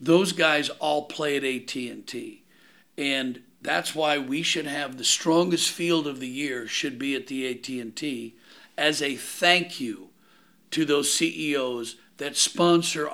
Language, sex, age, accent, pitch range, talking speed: English, male, 50-69, American, 130-160 Hz, 150 wpm